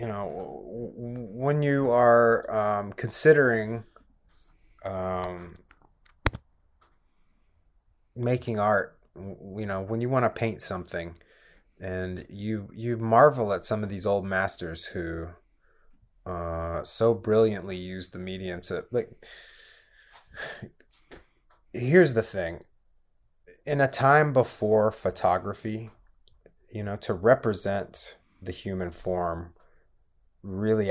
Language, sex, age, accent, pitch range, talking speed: English, male, 30-49, American, 85-110 Hz, 105 wpm